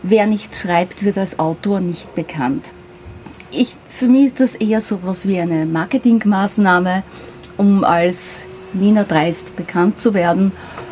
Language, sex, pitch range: German, female, 175-215 Hz